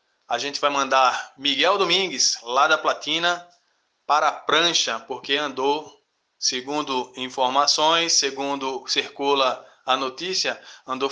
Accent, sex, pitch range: Brazilian, male, 135-165 Hz